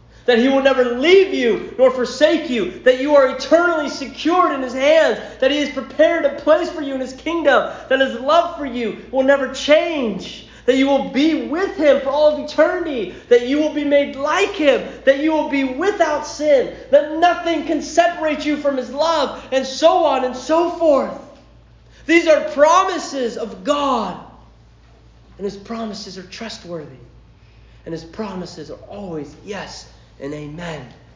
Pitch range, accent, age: 225-315 Hz, American, 30-49